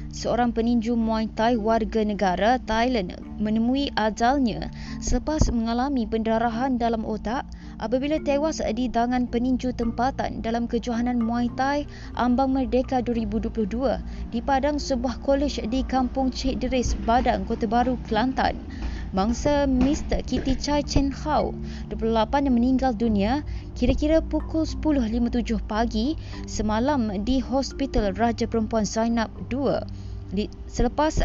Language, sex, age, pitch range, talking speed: Malay, female, 20-39, 225-265 Hz, 115 wpm